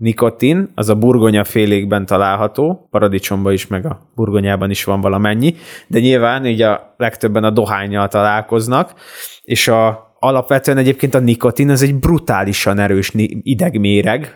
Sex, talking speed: male, 135 wpm